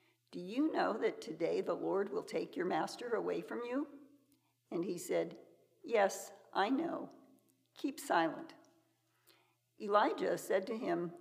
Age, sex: 60-79, female